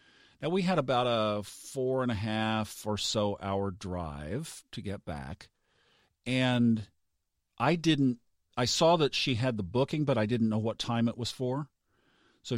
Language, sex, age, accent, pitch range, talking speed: English, male, 50-69, American, 100-125 Hz, 170 wpm